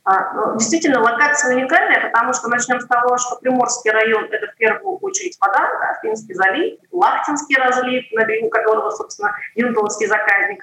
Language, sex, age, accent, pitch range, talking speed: Russian, female, 20-39, native, 205-265 Hz, 145 wpm